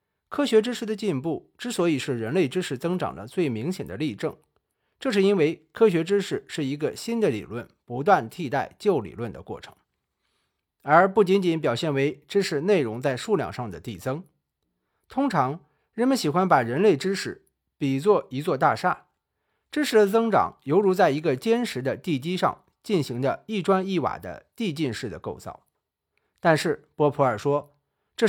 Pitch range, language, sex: 145-210 Hz, Chinese, male